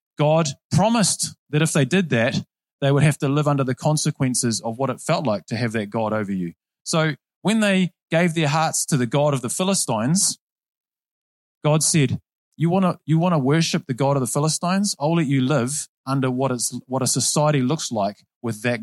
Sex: male